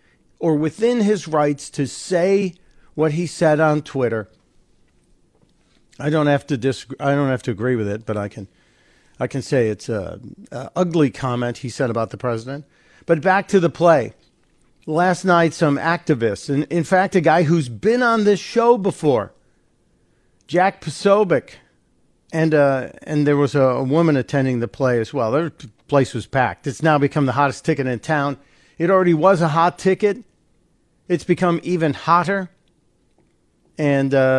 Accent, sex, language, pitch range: American, male, English, 135-170 Hz